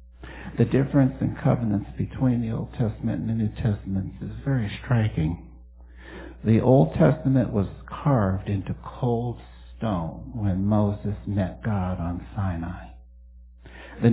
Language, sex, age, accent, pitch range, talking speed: English, male, 60-79, American, 80-125 Hz, 125 wpm